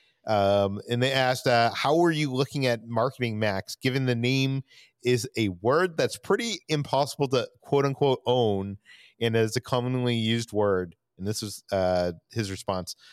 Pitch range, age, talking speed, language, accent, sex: 110-135 Hz, 30-49, 165 wpm, English, American, male